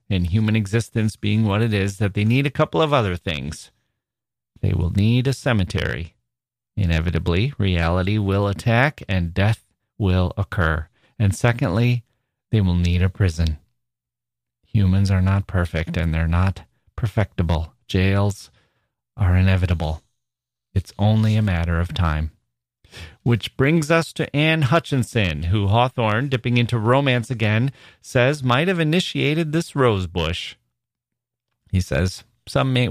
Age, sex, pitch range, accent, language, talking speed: 30-49, male, 95-125 Hz, American, English, 135 wpm